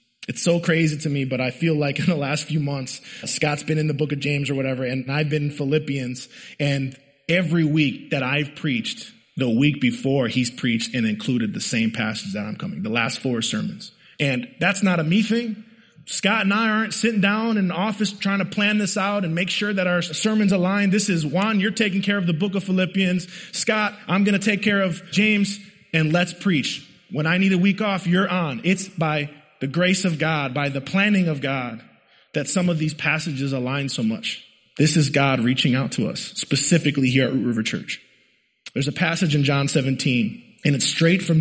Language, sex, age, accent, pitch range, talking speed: English, male, 20-39, American, 140-195 Hz, 215 wpm